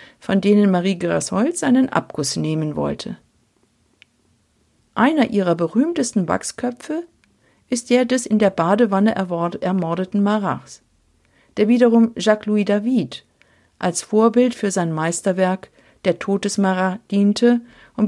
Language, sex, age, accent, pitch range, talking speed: German, female, 50-69, German, 190-235 Hz, 110 wpm